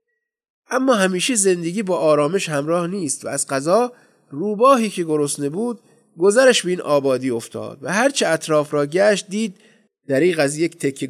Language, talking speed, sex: Persian, 155 wpm, male